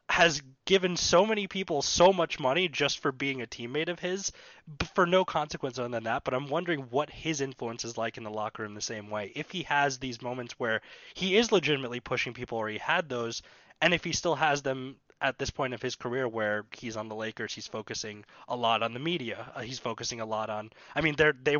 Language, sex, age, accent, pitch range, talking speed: English, male, 20-39, American, 115-165 Hz, 230 wpm